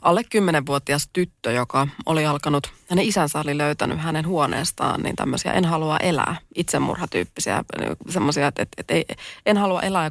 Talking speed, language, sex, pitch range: 160 wpm, Finnish, female, 150-170 Hz